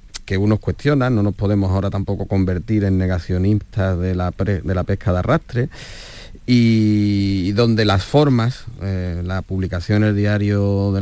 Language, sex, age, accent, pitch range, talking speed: Spanish, male, 30-49, Spanish, 90-110 Hz, 165 wpm